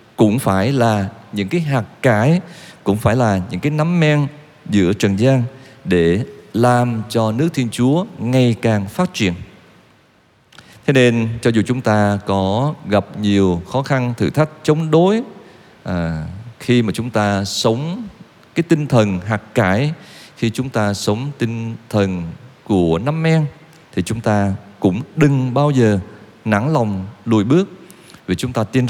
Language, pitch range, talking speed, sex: Vietnamese, 105-145 Hz, 160 wpm, male